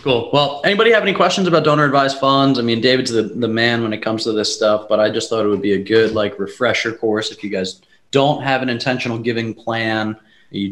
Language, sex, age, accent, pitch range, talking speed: English, male, 20-39, American, 100-120 Hz, 245 wpm